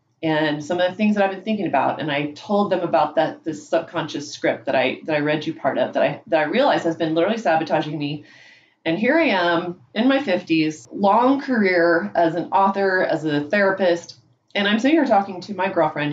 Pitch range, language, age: 160-195 Hz, English, 30-49